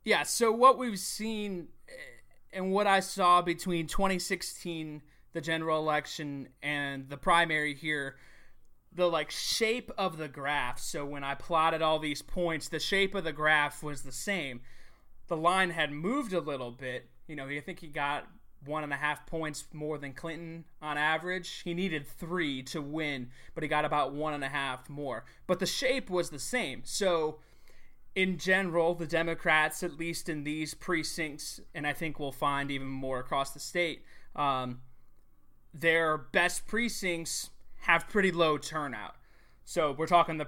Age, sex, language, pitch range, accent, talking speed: 20-39, male, English, 145-170 Hz, American, 170 wpm